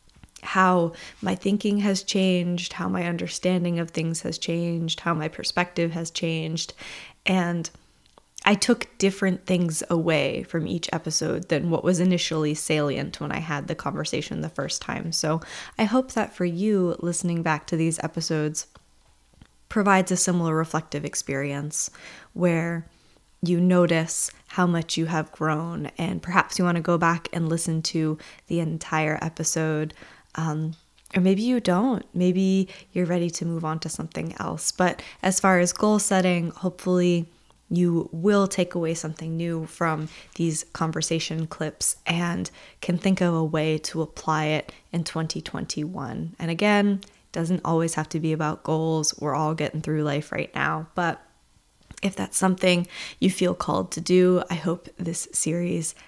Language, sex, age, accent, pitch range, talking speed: English, female, 20-39, American, 160-180 Hz, 160 wpm